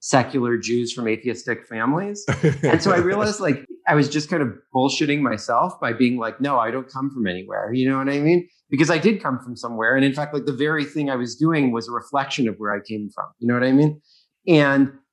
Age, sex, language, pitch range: 30-49, male, English, 120-150 Hz